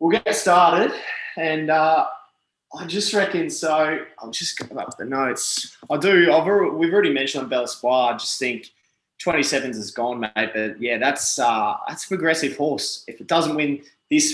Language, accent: English, Australian